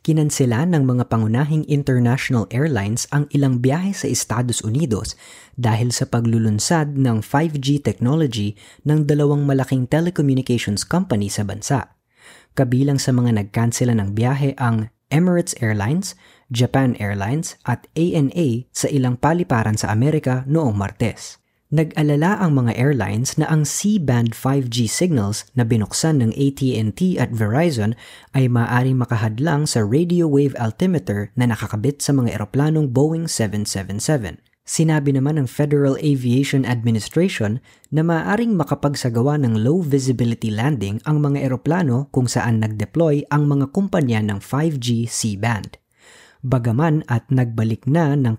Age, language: 20-39, Filipino